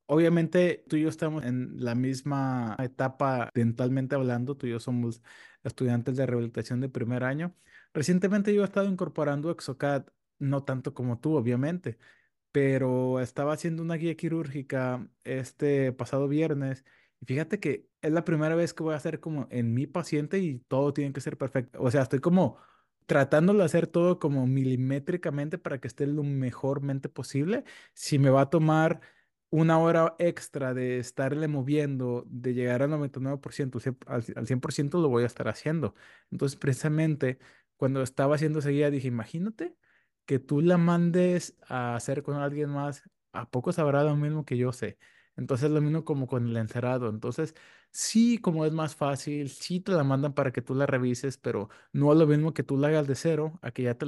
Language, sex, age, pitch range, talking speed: Spanish, male, 20-39, 125-155 Hz, 180 wpm